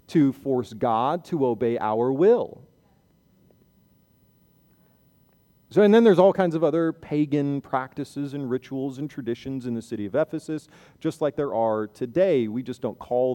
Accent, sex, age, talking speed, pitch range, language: American, male, 40-59, 155 wpm, 110-150 Hz, English